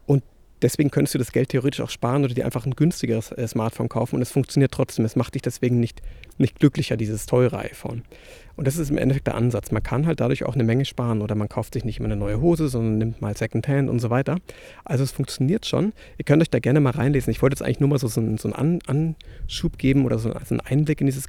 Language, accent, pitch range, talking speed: German, German, 115-140 Hz, 250 wpm